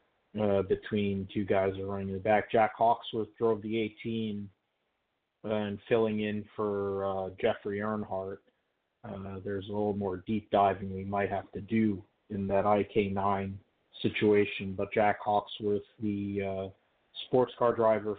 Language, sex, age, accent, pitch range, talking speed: English, male, 40-59, American, 100-110 Hz, 150 wpm